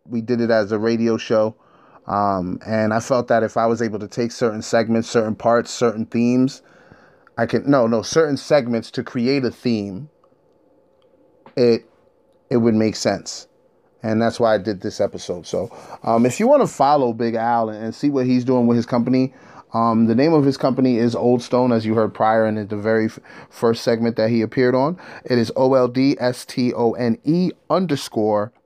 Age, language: 30-49, English